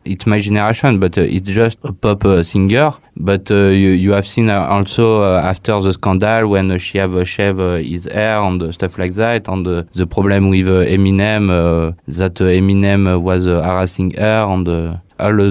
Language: English